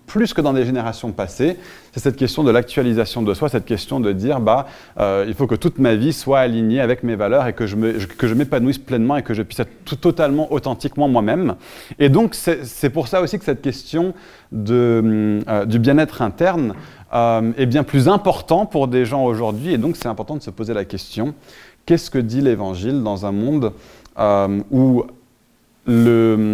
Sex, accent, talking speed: male, French, 205 wpm